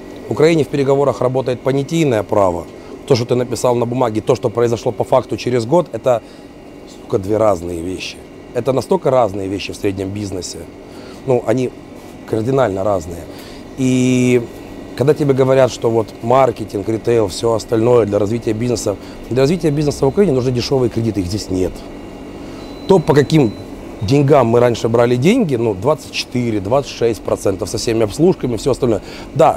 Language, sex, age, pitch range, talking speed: Russian, male, 30-49, 110-135 Hz, 160 wpm